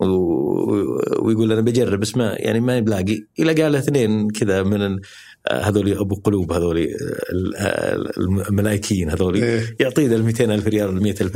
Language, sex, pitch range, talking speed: Arabic, male, 95-120 Hz, 120 wpm